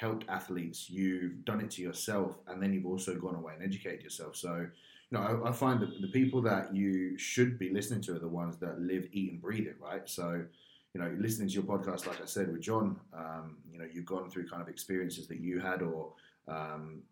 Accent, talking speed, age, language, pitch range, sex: British, 235 wpm, 20-39, English, 90-115 Hz, male